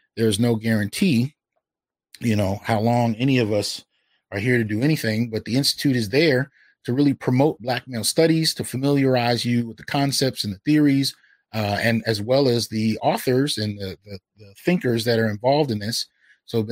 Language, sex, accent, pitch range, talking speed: English, male, American, 105-130 Hz, 190 wpm